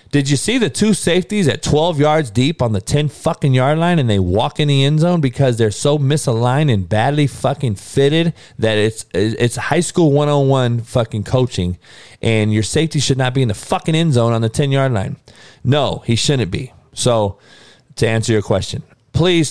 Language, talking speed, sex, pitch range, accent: English, 195 wpm, male, 110-150 Hz, American